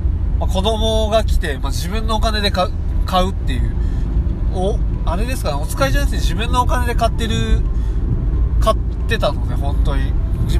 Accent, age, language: native, 20-39, Japanese